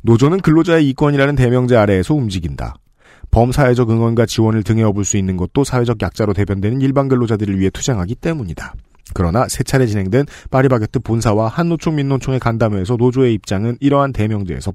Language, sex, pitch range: Korean, male, 110-145 Hz